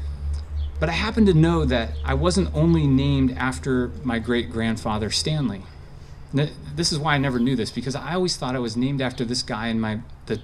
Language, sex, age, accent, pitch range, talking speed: English, male, 30-49, American, 110-145 Hz, 195 wpm